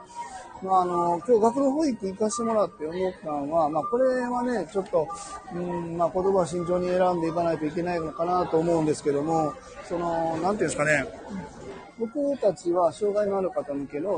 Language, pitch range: Japanese, 160-225 Hz